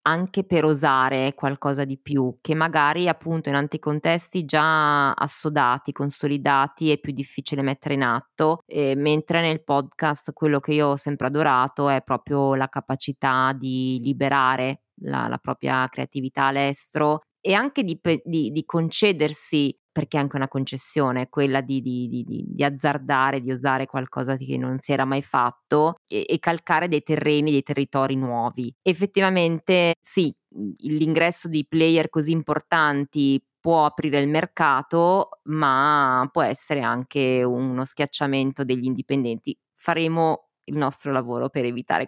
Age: 20-39